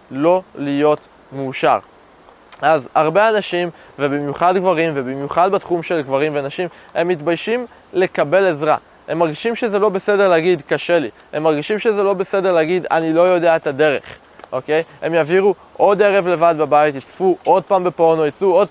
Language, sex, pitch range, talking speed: Hebrew, male, 160-210 Hz, 155 wpm